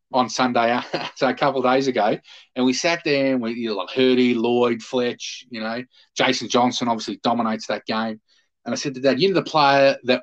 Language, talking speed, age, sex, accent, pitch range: English, 210 wpm, 30-49, male, Australian, 115-135 Hz